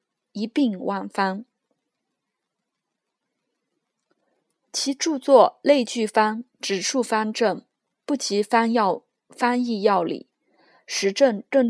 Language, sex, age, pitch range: Chinese, female, 20-39, 205-265 Hz